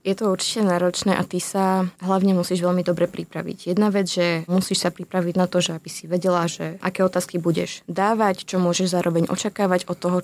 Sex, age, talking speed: female, 20-39, 205 wpm